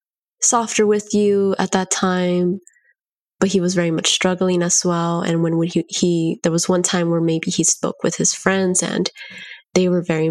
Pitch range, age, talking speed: 170-205 Hz, 20-39, 200 wpm